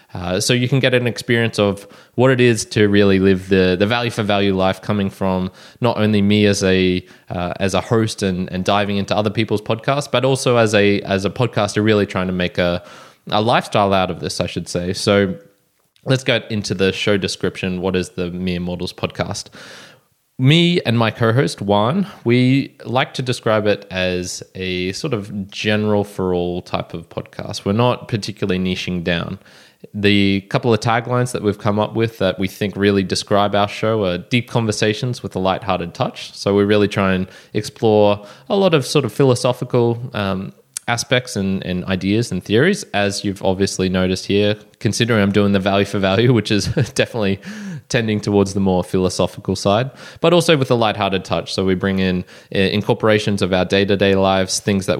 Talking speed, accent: 195 wpm, Australian